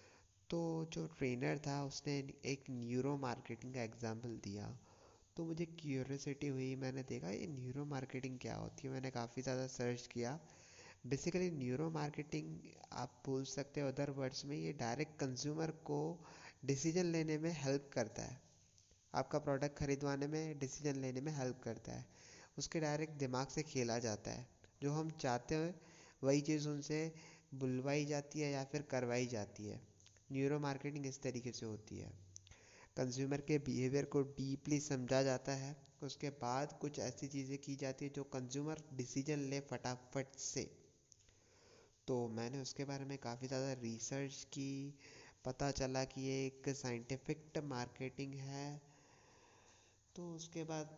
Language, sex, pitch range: Hindi, male, 125-145 Hz